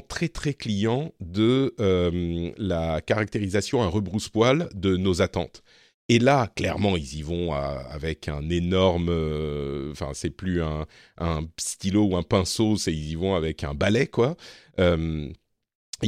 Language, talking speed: French, 155 wpm